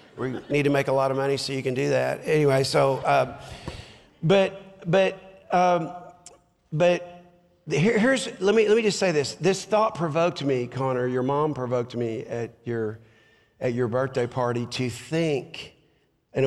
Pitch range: 125-155 Hz